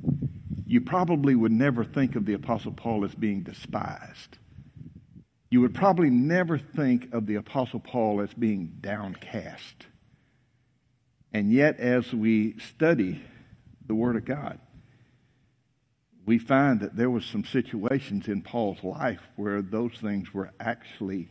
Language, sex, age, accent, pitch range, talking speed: English, male, 60-79, American, 105-125 Hz, 135 wpm